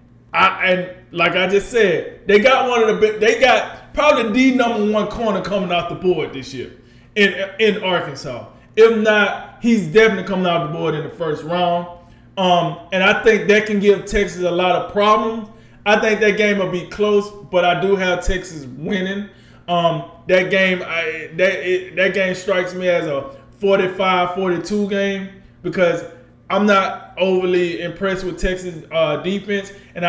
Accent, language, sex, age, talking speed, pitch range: American, English, male, 20-39, 180 wpm, 175-205 Hz